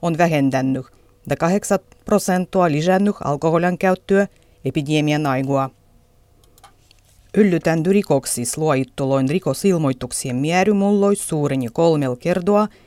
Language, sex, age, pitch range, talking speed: Finnish, female, 30-49, 130-185 Hz, 85 wpm